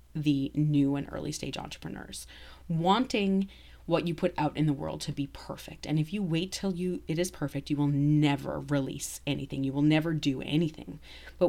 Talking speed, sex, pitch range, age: 195 wpm, female, 140-180 Hz, 30-49